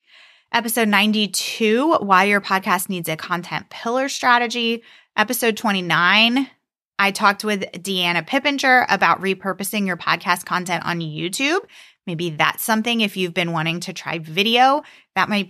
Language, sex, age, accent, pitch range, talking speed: English, female, 20-39, American, 175-225 Hz, 140 wpm